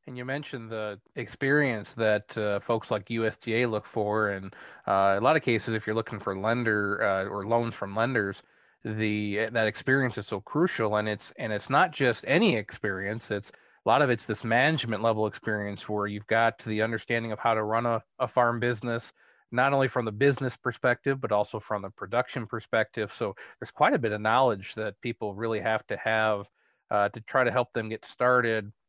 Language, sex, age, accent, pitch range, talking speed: English, male, 30-49, American, 110-130 Hz, 200 wpm